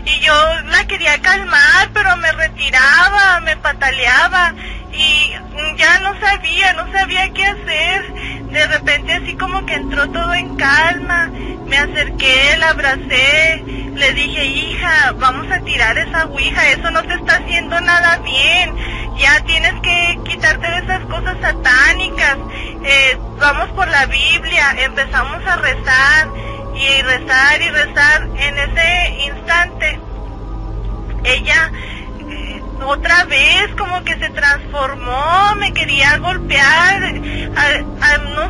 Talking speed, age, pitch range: 125 wpm, 30-49, 290-355 Hz